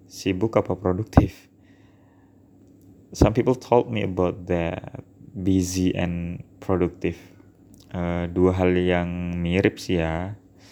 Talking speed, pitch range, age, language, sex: 105 wpm, 90-100 Hz, 20-39, Indonesian, male